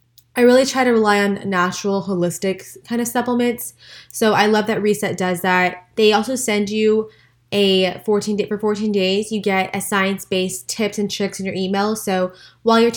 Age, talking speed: 20-39, 190 wpm